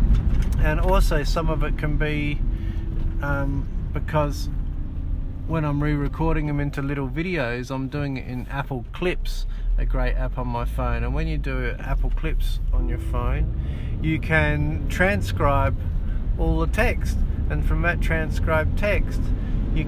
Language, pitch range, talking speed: English, 85-105 Hz, 150 wpm